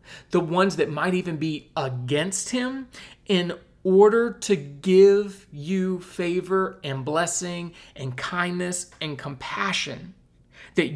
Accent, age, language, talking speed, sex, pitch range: American, 40-59, English, 115 wpm, male, 135-180 Hz